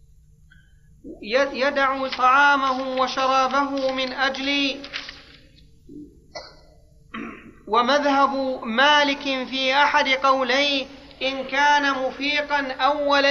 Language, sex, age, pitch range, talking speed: Arabic, male, 40-59, 260-285 Hz, 65 wpm